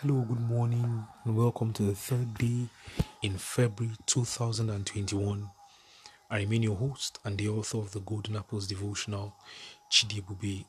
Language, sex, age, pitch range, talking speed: English, male, 30-49, 100-115 Hz, 140 wpm